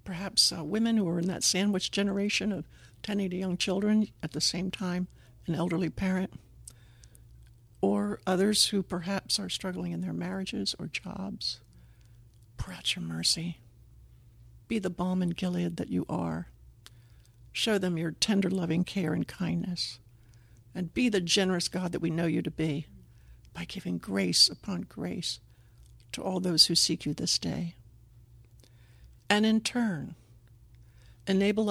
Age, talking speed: 60-79, 150 wpm